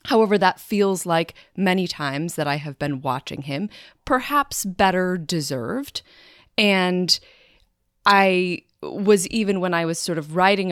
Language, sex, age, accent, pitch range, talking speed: English, female, 30-49, American, 150-200 Hz, 140 wpm